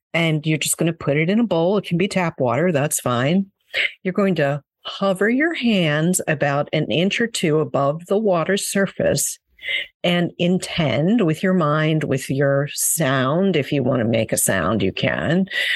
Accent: American